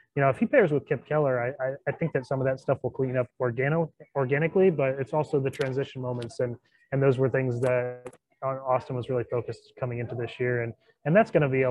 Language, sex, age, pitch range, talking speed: English, male, 20-39, 120-135 Hz, 250 wpm